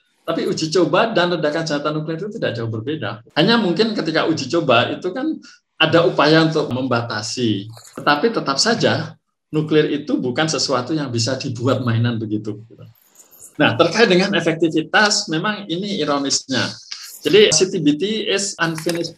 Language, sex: Indonesian, male